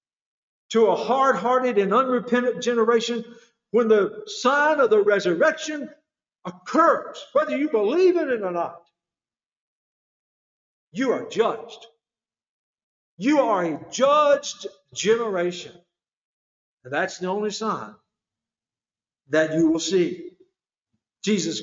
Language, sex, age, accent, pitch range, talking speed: English, male, 60-79, American, 150-240 Hz, 105 wpm